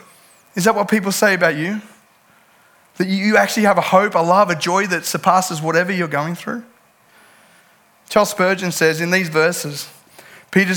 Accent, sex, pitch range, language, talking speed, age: Australian, male, 155-205 Hz, English, 165 wpm, 20-39